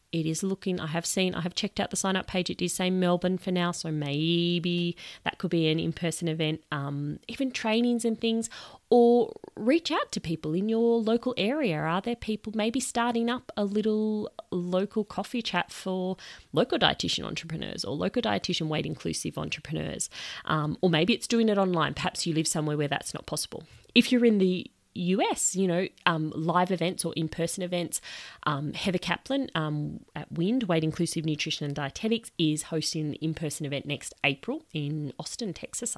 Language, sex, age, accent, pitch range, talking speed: English, female, 30-49, Australian, 160-215 Hz, 190 wpm